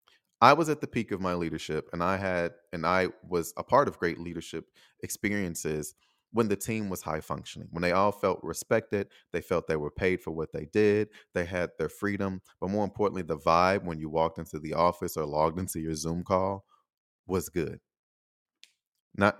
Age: 30-49